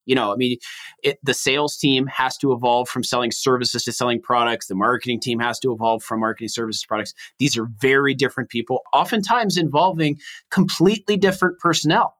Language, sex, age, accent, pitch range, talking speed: English, male, 30-49, American, 120-160 Hz, 180 wpm